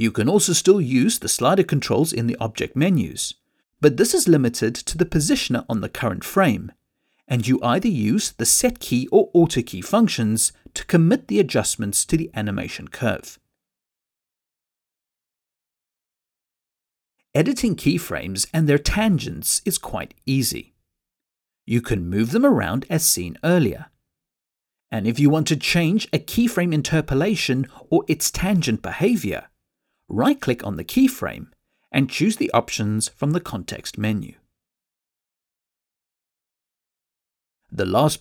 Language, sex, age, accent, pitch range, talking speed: English, male, 50-69, British, 115-185 Hz, 135 wpm